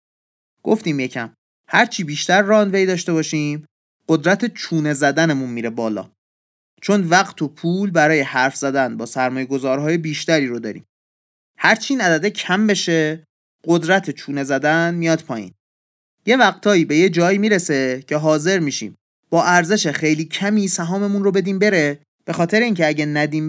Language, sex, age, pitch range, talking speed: Persian, male, 30-49, 135-185 Hz, 145 wpm